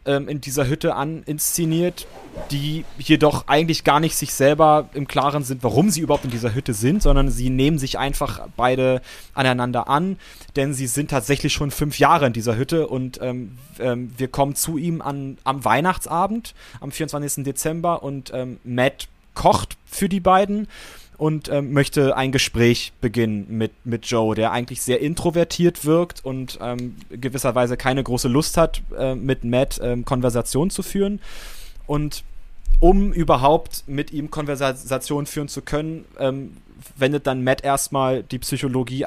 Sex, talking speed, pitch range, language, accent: male, 160 wpm, 125-150 Hz, German, German